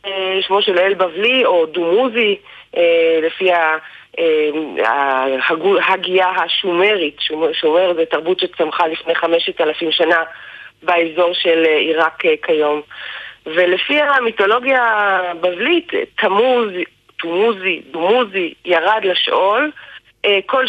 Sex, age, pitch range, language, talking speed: female, 30-49, 170-245 Hz, Hebrew, 90 wpm